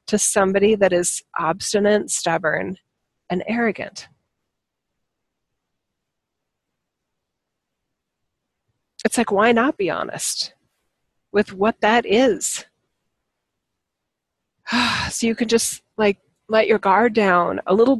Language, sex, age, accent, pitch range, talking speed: English, female, 40-59, American, 180-220 Hz, 95 wpm